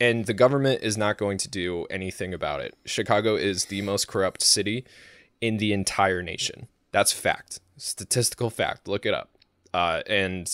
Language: English